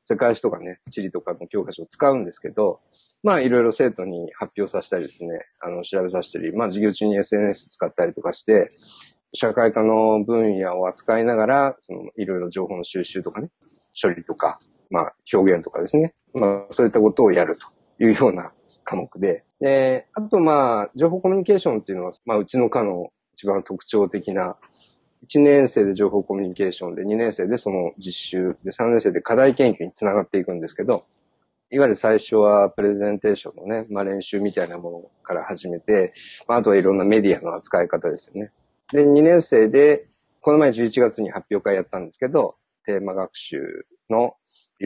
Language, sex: Japanese, male